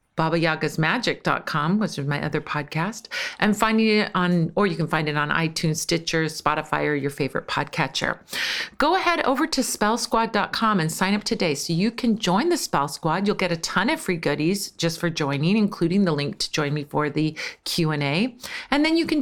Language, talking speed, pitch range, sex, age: English, 195 wpm, 160-210 Hz, female, 40-59